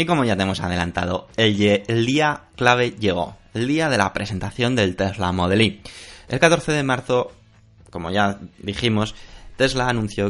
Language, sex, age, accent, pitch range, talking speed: Spanish, male, 20-39, Spanish, 95-120 Hz, 165 wpm